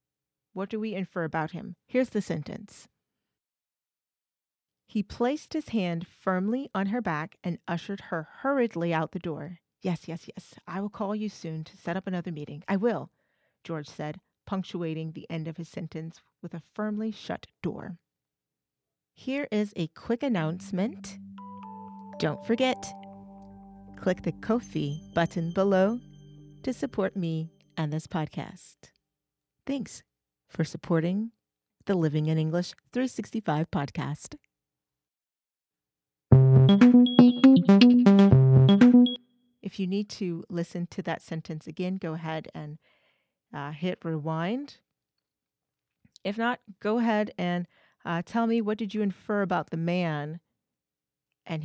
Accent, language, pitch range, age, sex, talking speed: American, English, 160-205 Hz, 40-59, female, 130 wpm